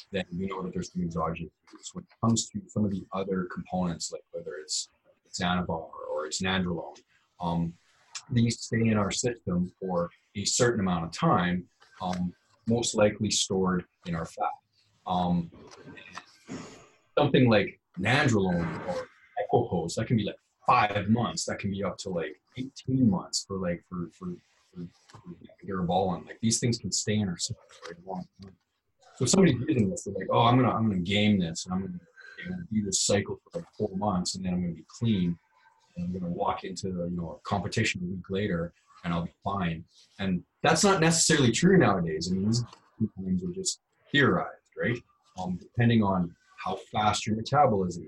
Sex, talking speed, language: male, 190 wpm, English